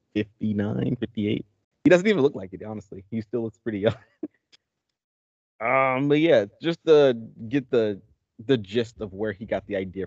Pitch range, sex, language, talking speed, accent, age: 100-120 Hz, male, English, 175 wpm, American, 30-49